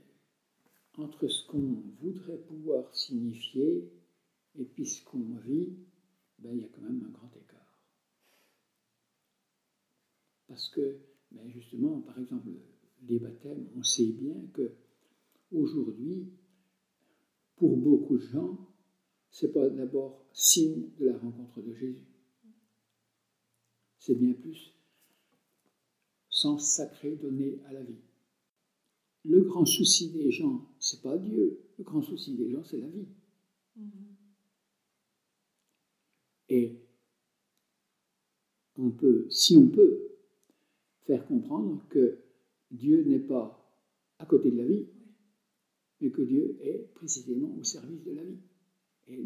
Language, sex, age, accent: French, male, 60-79, French